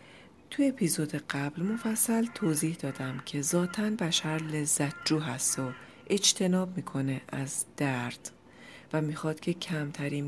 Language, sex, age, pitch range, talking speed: Persian, female, 40-59, 140-175 Hz, 125 wpm